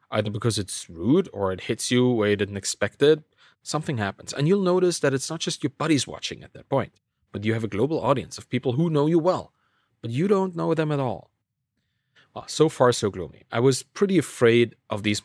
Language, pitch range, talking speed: English, 110-150 Hz, 230 wpm